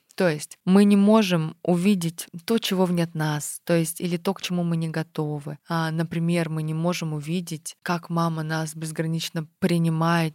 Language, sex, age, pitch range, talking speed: Russian, female, 20-39, 160-185 Hz, 175 wpm